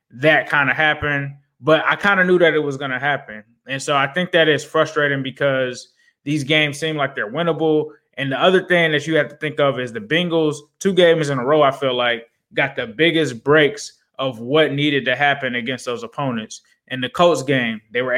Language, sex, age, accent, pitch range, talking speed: English, male, 20-39, American, 135-160 Hz, 225 wpm